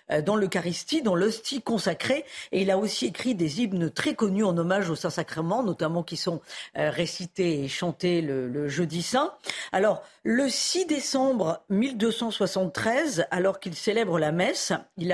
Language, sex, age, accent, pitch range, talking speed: French, female, 40-59, French, 180-255 Hz, 155 wpm